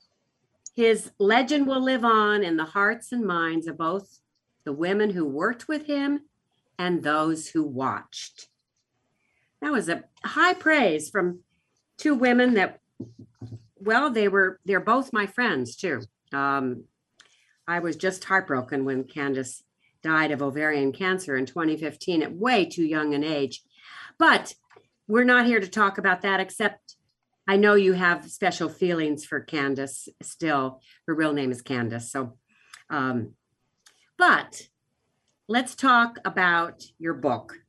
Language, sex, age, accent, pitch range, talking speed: English, female, 50-69, American, 150-225 Hz, 145 wpm